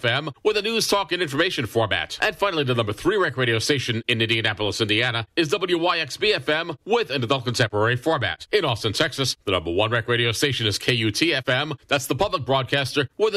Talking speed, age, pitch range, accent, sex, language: 195 wpm, 40-59, 115-165 Hz, American, male, English